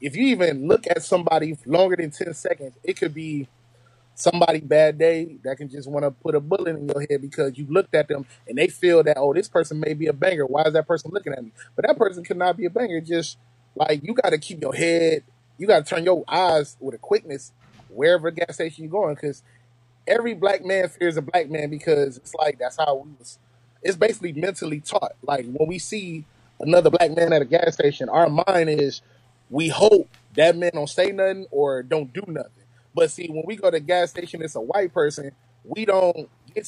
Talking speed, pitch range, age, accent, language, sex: 225 wpm, 140-185 Hz, 20-39, American, English, male